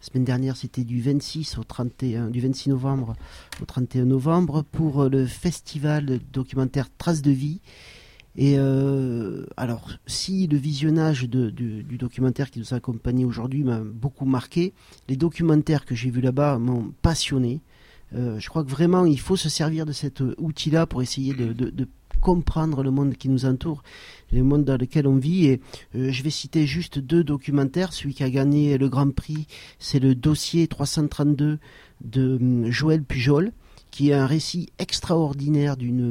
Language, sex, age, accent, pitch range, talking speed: French, male, 40-59, French, 125-155 Hz, 170 wpm